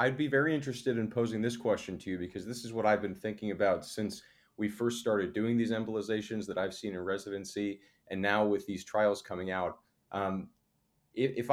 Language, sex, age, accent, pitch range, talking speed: English, male, 30-49, American, 100-120 Hz, 205 wpm